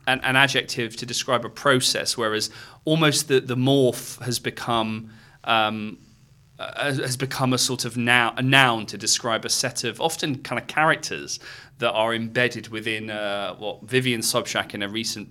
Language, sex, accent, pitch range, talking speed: English, male, British, 105-130 Hz, 170 wpm